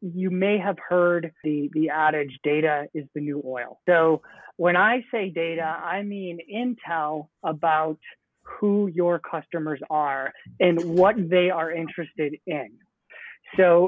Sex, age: male, 30-49